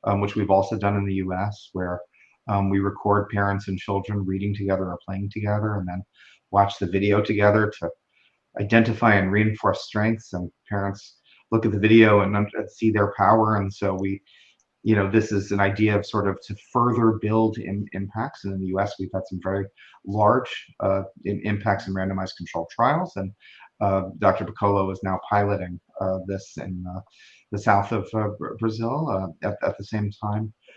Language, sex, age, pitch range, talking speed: Portuguese, male, 30-49, 95-110 Hz, 185 wpm